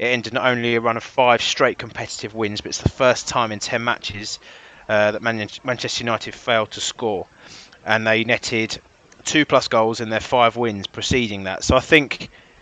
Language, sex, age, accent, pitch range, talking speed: English, male, 20-39, British, 105-125 Hz, 200 wpm